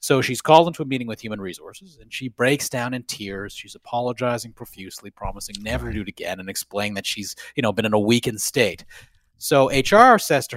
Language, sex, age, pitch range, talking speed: English, male, 30-49, 105-155 Hz, 220 wpm